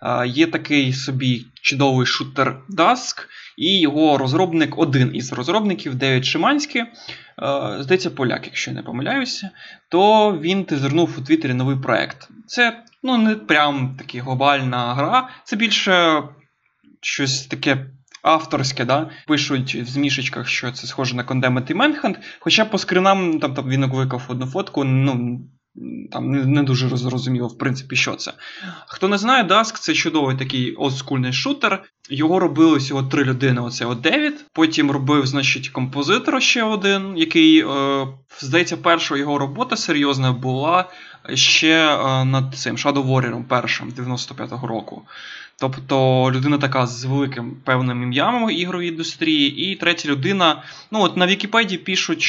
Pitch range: 130-180 Hz